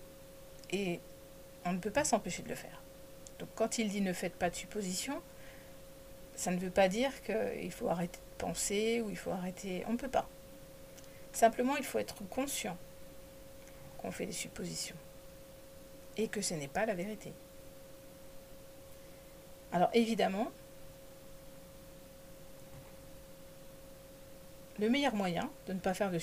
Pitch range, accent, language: 180-225 Hz, French, French